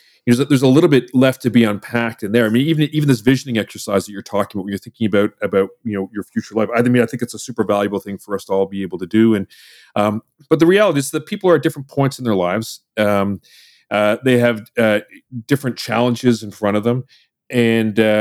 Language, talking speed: English, 245 wpm